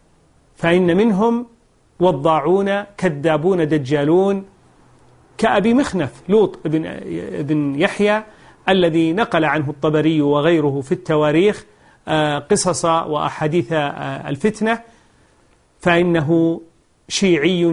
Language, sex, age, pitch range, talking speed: Arabic, male, 40-59, 155-200 Hz, 80 wpm